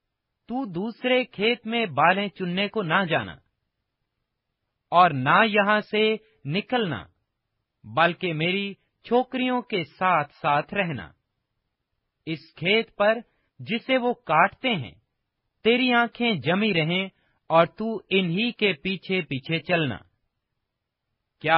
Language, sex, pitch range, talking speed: Urdu, male, 155-210 Hz, 105 wpm